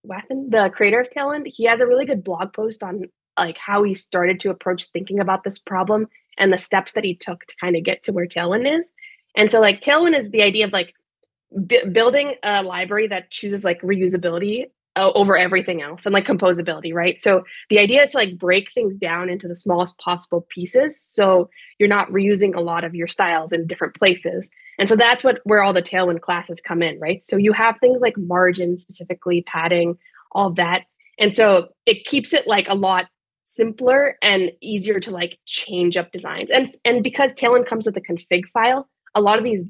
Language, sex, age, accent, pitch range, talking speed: English, female, 20-39, American, 180-230 Hz, 210 wpm